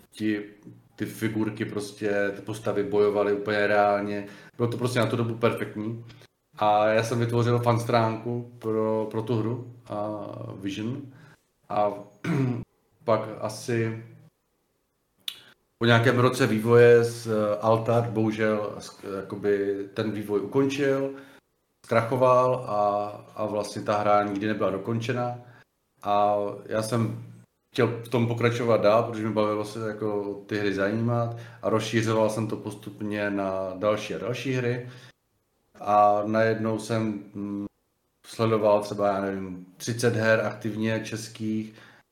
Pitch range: 105-120 Hz